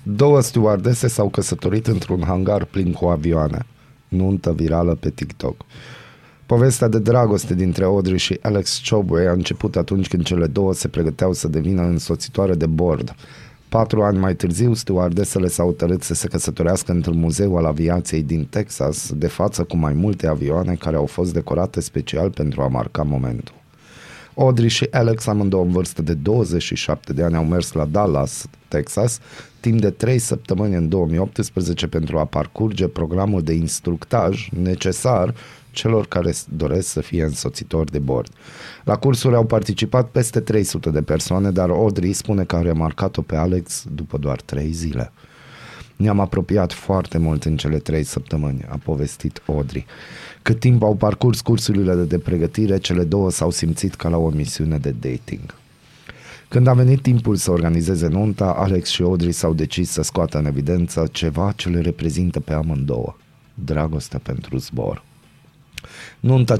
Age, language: 30-49, Romanian